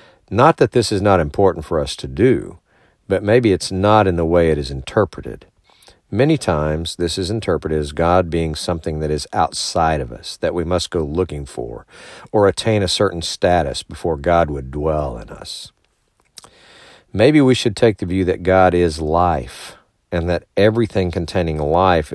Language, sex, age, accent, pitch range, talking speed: English, male, 50-69, American, 80-105 Hz, 180 wpm